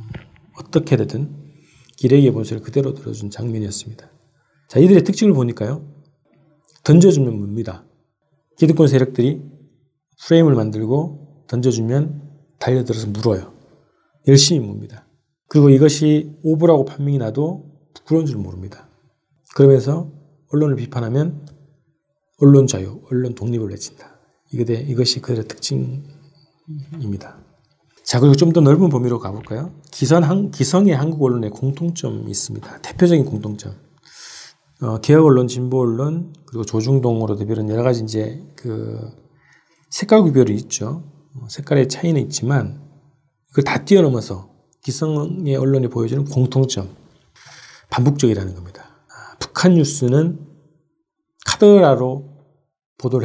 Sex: male